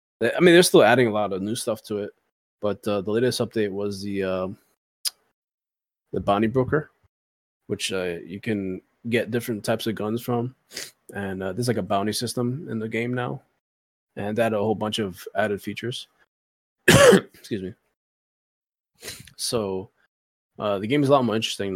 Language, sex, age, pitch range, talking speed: English, male, 20-39, 100-120 Hz, 175 wpm